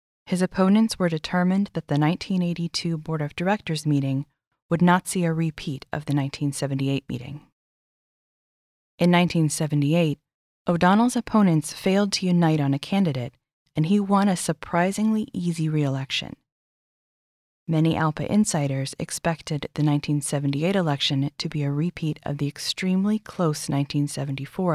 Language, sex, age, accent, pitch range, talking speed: English, female, 20-39, American, 145-185 Hz, 130 wpm